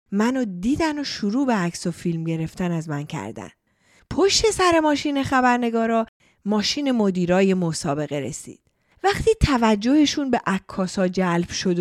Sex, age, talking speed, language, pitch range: female, 30-49, 130 wpm, Persian, 190-315 Hz